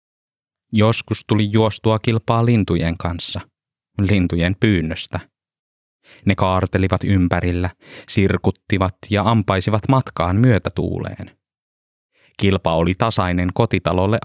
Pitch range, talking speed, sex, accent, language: 85-105 Hz, 90 wpm, male, native, Finnish